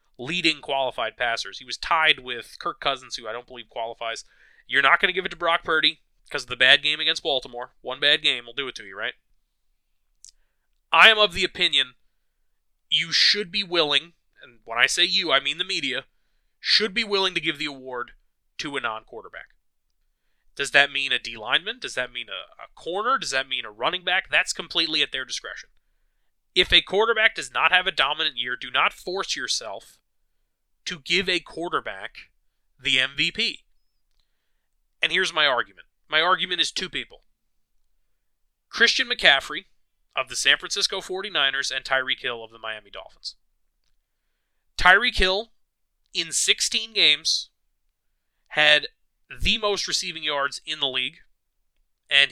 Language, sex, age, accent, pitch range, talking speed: English, male, 30-49, American, 130-185 Hz, 165 wpm